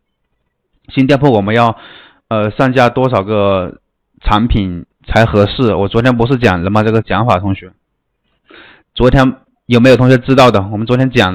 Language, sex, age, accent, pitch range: Chinese, male, 20-39, native, 100-125 Hz